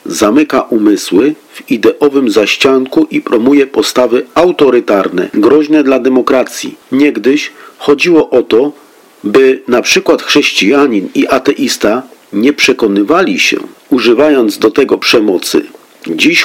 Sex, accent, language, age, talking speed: male, native, Polish, 50-69, 110 wpm